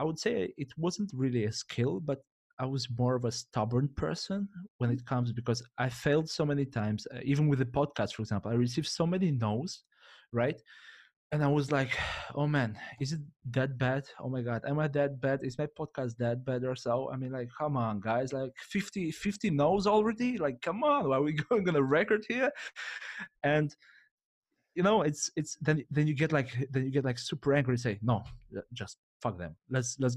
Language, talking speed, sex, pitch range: English, 210 wpm, male, 115-150 Hz